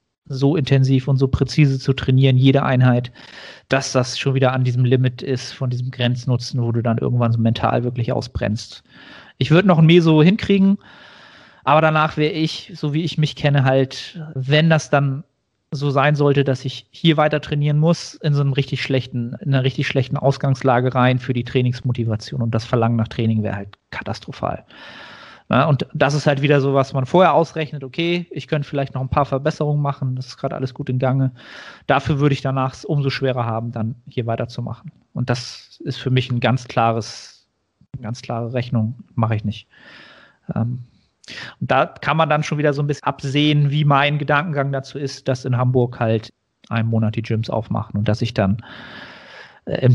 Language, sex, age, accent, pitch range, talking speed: German, male, 40-59, German, 120-145 Hz, 190 wpm